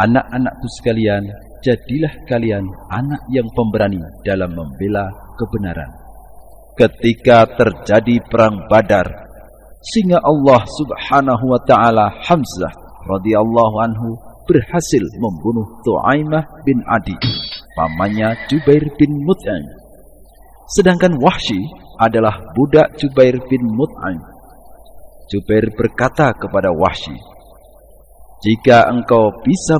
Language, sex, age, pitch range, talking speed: Indonesian, male, 50-69, 100-135 Hz, 90 wpm